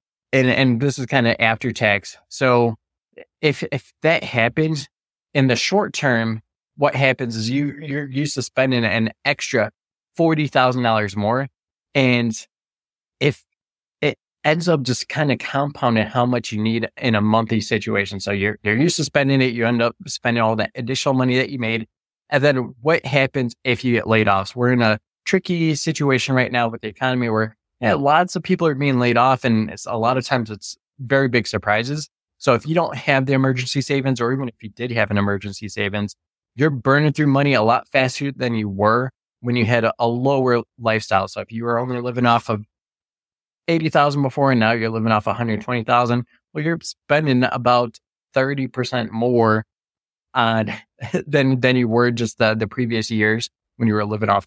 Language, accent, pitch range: English, American, 110-135 Hz